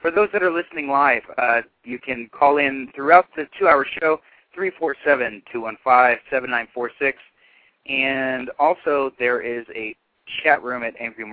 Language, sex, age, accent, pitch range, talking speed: English, male, 30-49, American, 115-140 Hz, 120 wpm